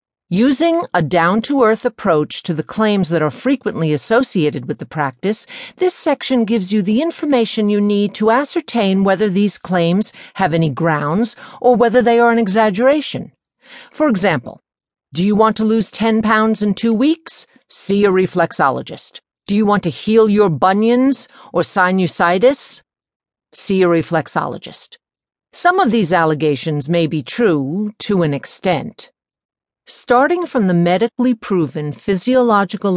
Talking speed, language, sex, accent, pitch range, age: 145 wpm, English, female, American, 165-235 Hz, 50-69